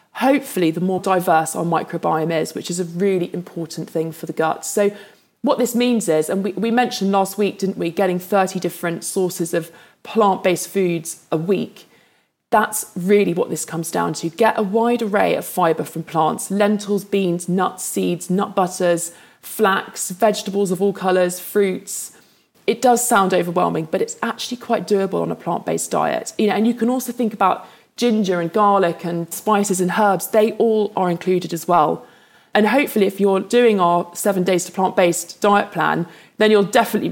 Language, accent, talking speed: English, British, 185 wpm